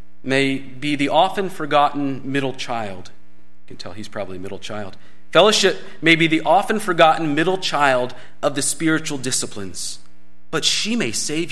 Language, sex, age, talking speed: English, male, 40-59, 160 wpm